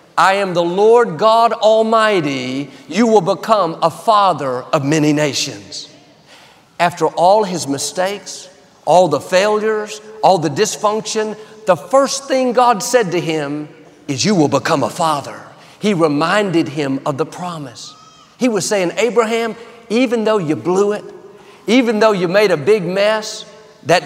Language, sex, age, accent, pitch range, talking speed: English, male, 50-69, American, 165-220 Hz, 150 wpm